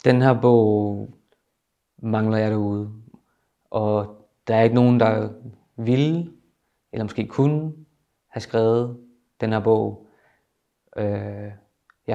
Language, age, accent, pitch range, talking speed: Danish, 20-39, native, 110-120 Hz, 110 wpm